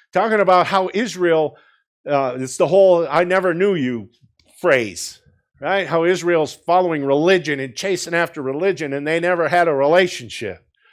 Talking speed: 155 wpm